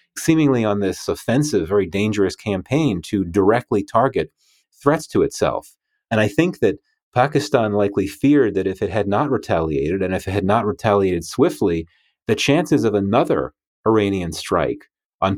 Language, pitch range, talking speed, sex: English, 85-125 Hz, 155 wpm, male